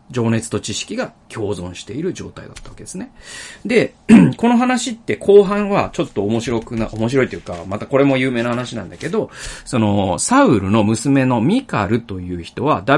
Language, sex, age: Japanese, male, 40-59